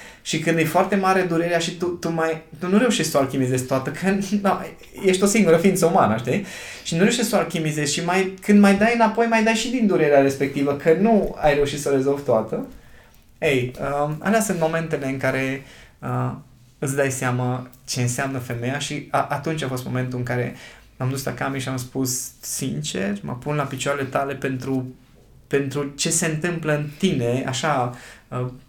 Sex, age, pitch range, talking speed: male, 20-39, 130-170 Hz, 200 wpm